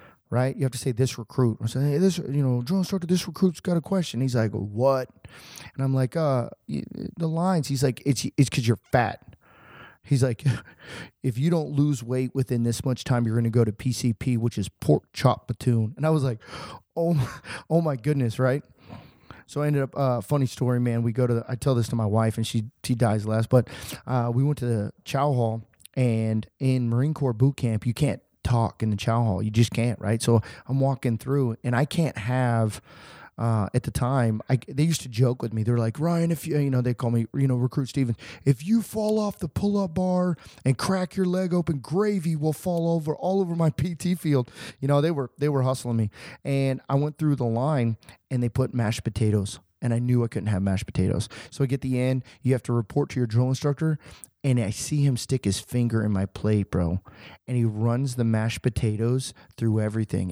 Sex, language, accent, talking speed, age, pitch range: male, English, American, 230 wpm, 20-39, 115-145 Hz